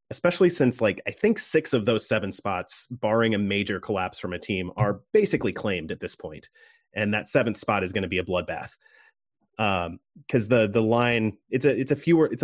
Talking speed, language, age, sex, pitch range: 210 wpm, English, 30-49, male, 95-125 Hz